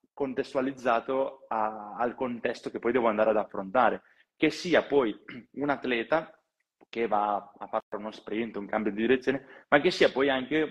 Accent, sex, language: native, male, Italian